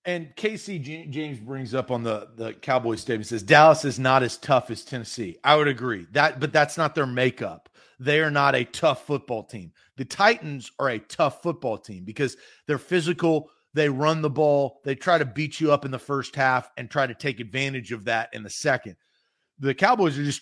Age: 40-59